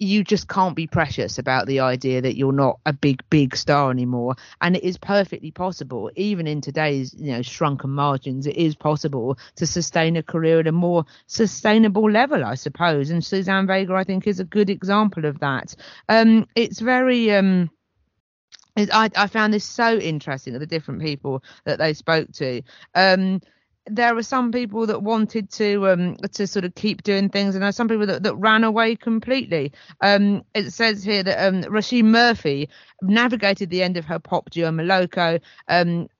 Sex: female